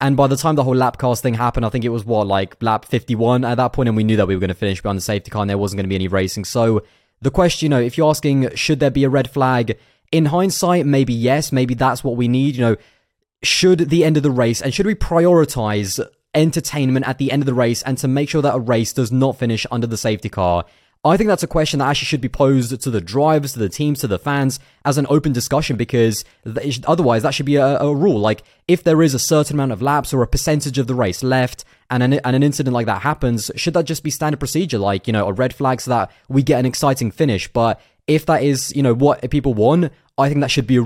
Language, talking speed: English, 275 wpm